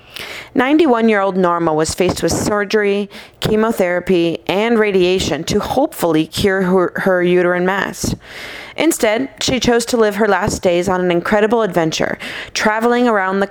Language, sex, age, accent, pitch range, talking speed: English, female, 30-49, American, 175-225 Hz, 140 wpm